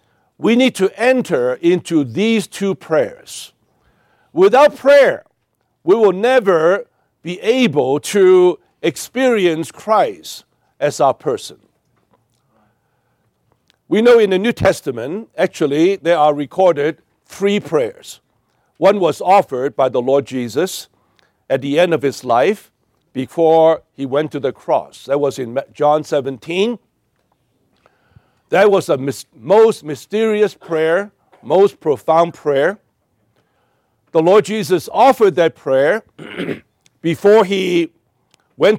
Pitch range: 140-215 Hz